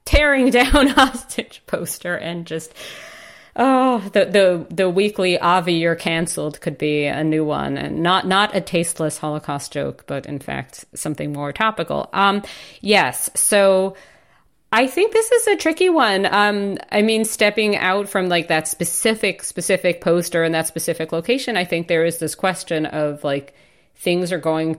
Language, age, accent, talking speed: English, 40-59, American, 165 wpm